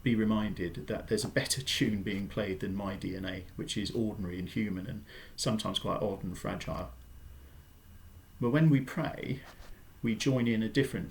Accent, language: British, English